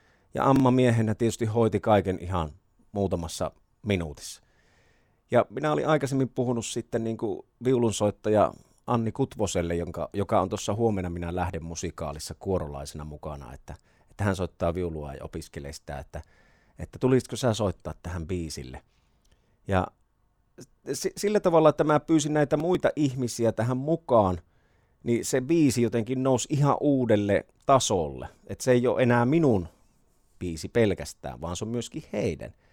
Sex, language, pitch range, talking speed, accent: male, Finnish, 90-125 Hz, 140 wpm, native